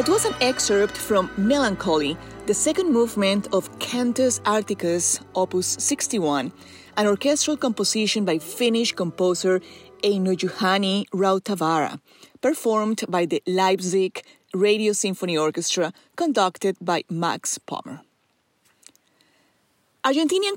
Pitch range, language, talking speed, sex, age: 180-235 Hz, English, 100 wpm, female, 30-49